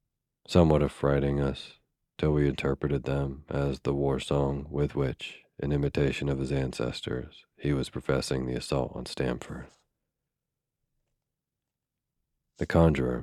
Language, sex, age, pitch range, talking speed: English, male, 40-59, 65-75 Hz, 120 wpm